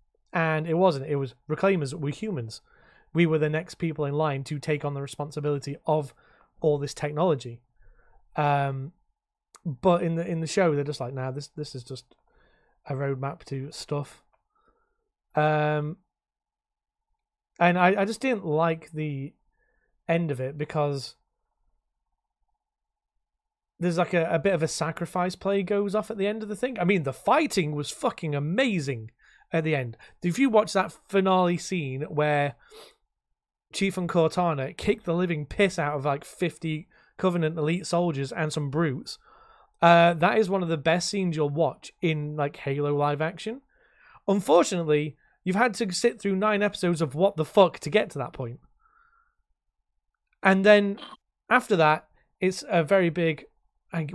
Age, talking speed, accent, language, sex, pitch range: 30-49, 165 wpm, British, English, male, 150-205 Hz